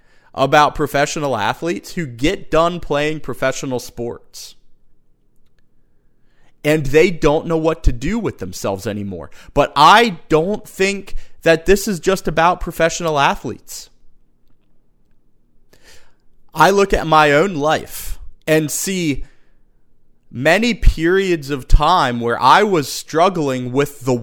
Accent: American